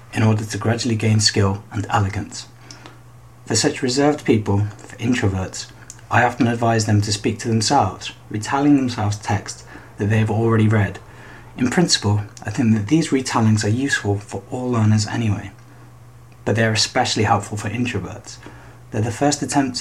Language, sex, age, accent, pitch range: Japanese, male, 30-49, British, 105-125 Hz